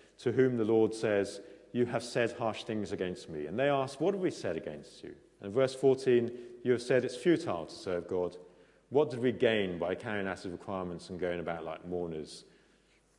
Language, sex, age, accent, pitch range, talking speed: English, male, 40-59, British, 95-125 Hz, 210 wpm